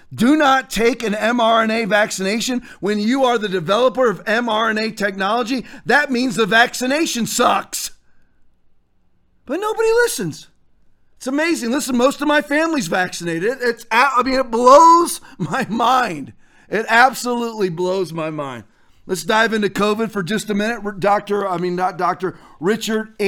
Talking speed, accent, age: 145 wpm, American, 40-59